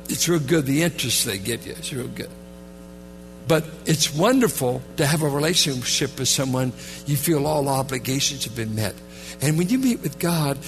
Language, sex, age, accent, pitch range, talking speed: English, male, 60-79, American, 135-195 Hz, 185 wpm